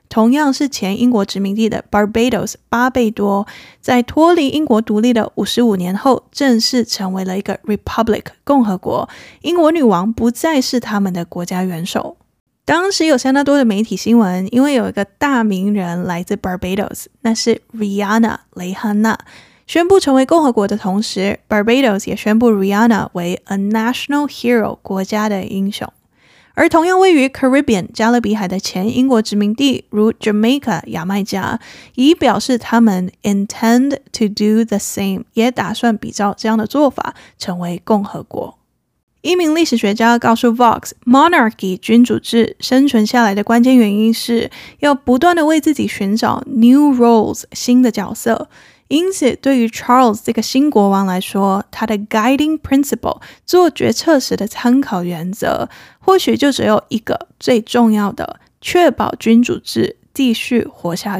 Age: 20-39